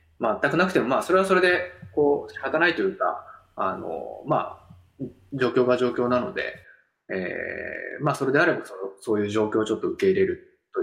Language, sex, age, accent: Japanese, male, 20-39, native